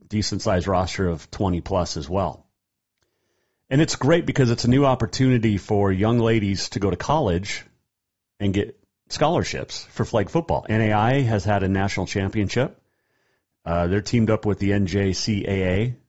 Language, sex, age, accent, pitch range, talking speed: English, male, 40-59, American, 95-120 Hz, 150 wpm